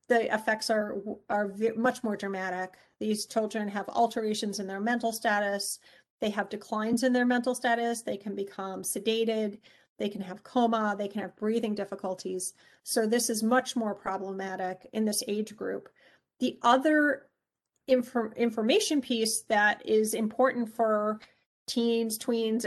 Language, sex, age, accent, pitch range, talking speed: English, female, 40-59, American, 205-235 Hz, 150 wpm